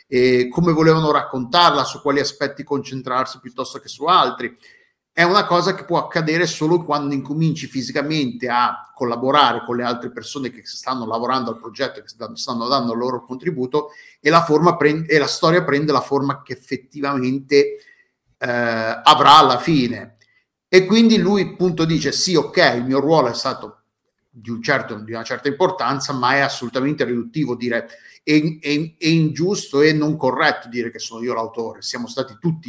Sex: male